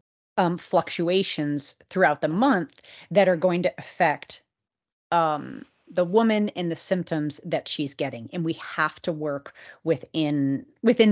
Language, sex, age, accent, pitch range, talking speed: English, female, 30-49, American, 155-195 Hz, 140 wpm